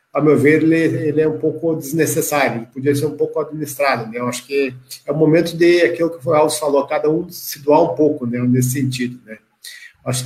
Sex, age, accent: male, 50-69, Brazilian